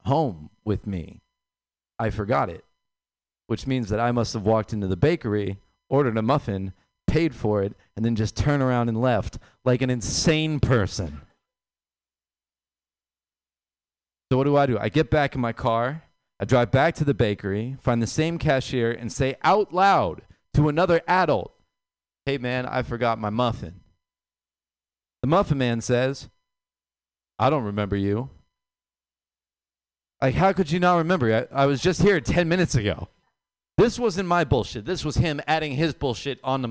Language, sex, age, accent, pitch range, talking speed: English, male, 40-59, American, 95-145 Hz, 165 wpm